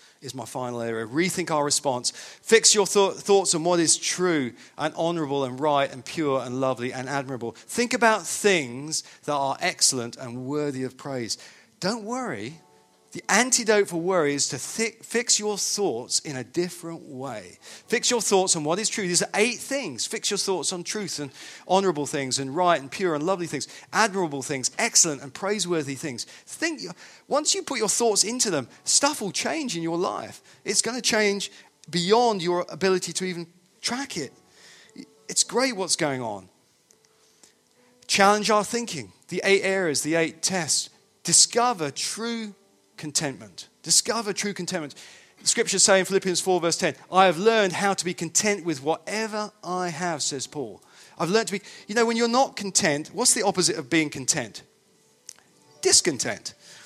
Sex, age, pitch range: male, 40-59, 150-210 Hz